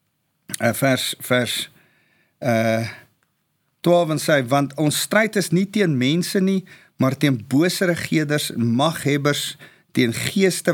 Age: 50-69